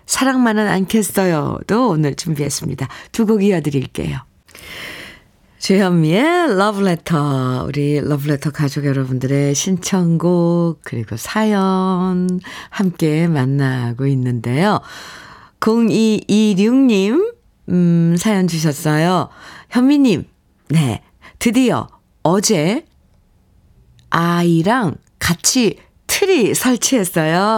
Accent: native